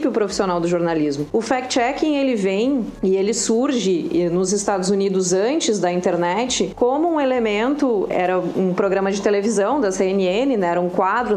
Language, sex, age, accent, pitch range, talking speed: Portuguese, female, 30-49, Brazilian, 195-245 Hz, 160 wpm